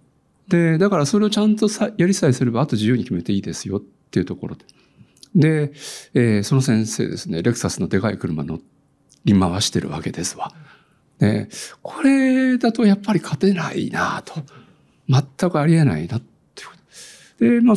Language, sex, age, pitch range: Japanese, male, 60-79, 120-185 Hz